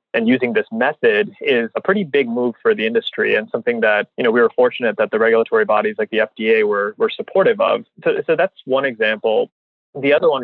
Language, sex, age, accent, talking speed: English, male, 20-39, American, 225 wpm